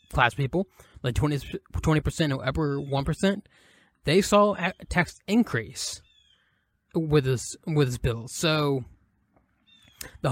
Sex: male